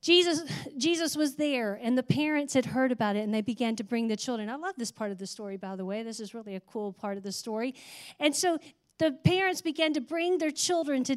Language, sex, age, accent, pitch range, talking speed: English, female, 40-59, American, 240-335 Hz, 250 wpm